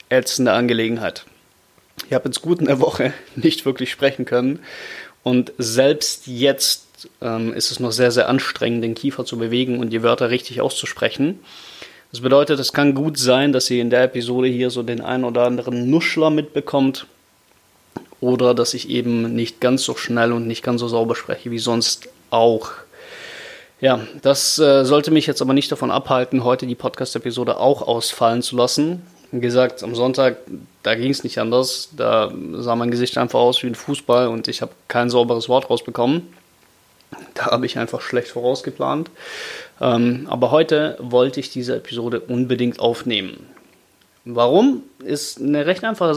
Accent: German